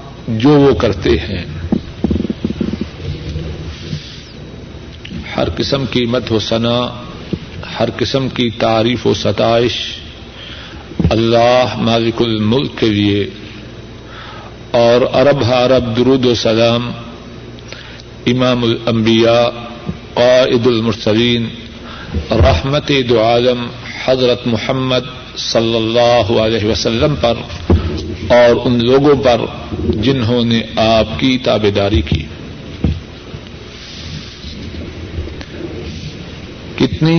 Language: Urdu